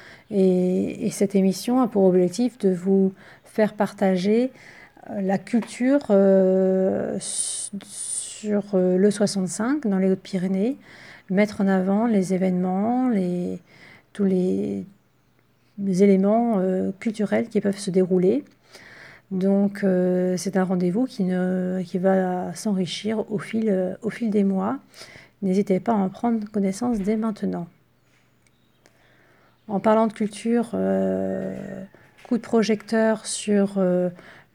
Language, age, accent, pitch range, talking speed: French, 40-59, French, 185-215 Hz, 115 wpm